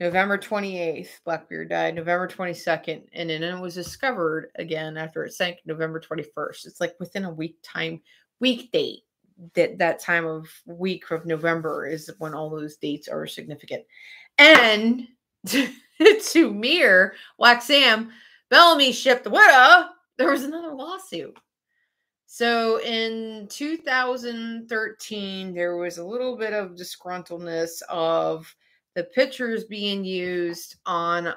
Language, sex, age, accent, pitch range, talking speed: English, female, 30-49, American, 165-240 Hz, 130 wpm